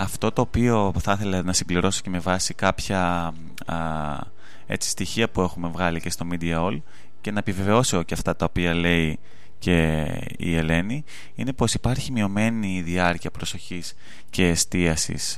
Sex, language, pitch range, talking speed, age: male, Greek, 85-105 Hz, 155 wpm, 20-39